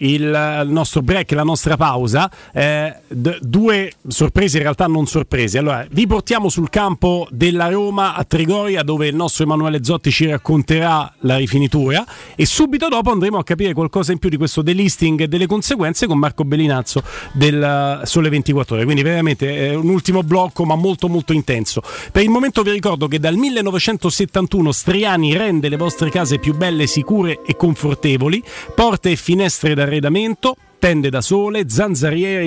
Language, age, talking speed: Italian, 40-59, 165 wpm